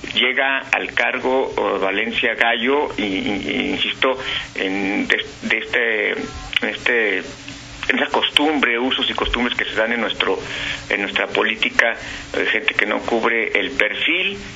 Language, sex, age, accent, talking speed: Spanish, male, 50-69, Mexican, 150 wpm